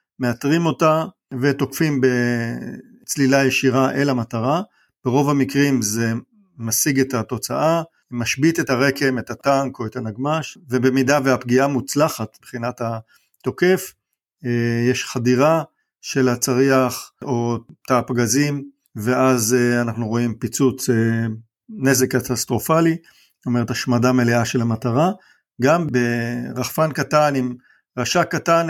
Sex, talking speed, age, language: male, 105 wpm, 50-69, Hebrew